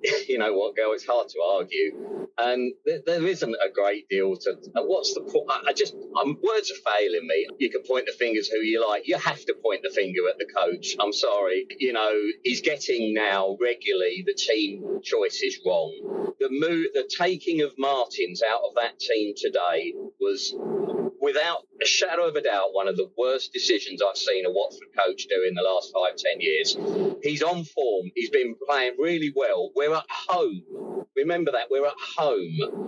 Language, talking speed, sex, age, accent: English, 190 wpm, male, 30-49, British